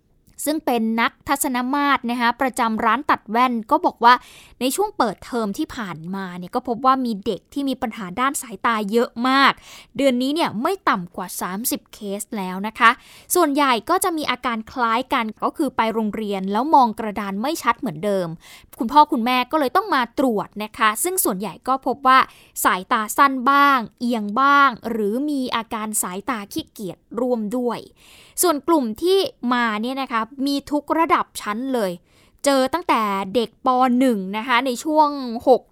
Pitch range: 220-280 Hz